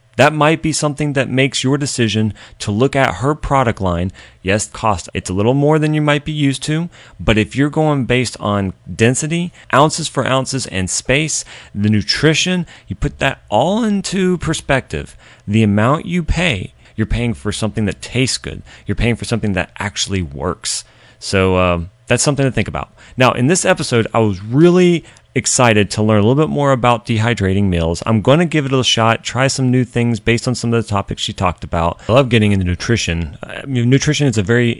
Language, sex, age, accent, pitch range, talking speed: English, male, 30-49, American, 100-135 Hz, 205 wpm